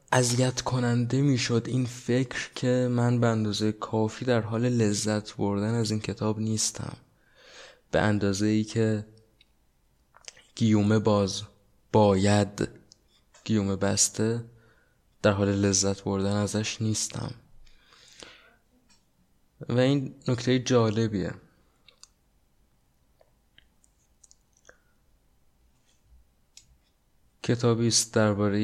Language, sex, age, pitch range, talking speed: Persian, male, 20-39, 95-110 Hz, 80 wpm